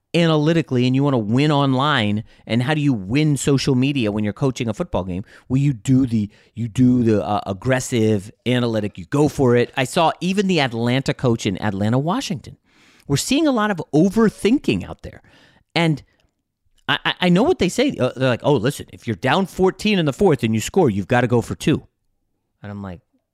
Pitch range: 115-165 Hz